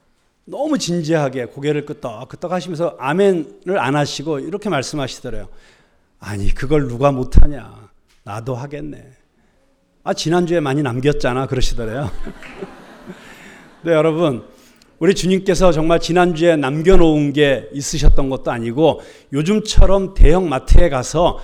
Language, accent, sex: Korean, native, male